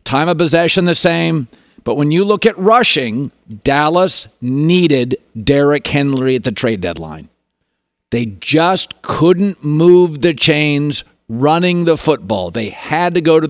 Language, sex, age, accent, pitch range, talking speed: English, male, 50-69, American, 130-175 Hz, 145 wpm